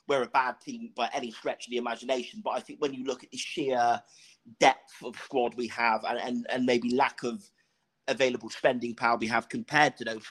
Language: English